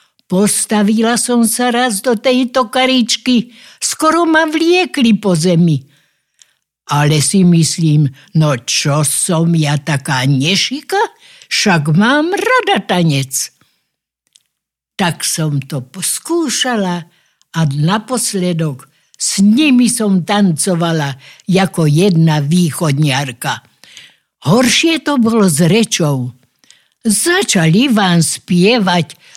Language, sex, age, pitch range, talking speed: Slovak, female, 60-79, 155-235 Hz, 95 wpm